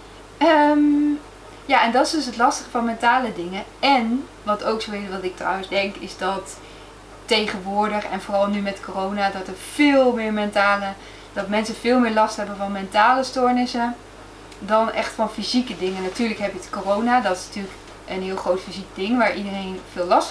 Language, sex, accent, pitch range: Dutch, female, Dutch, 200-255 Hz